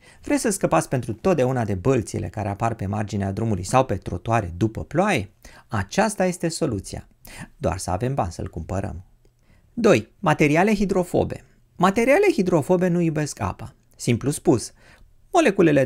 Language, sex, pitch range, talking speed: Romanian, male, 110-170 Hz, 145 wpm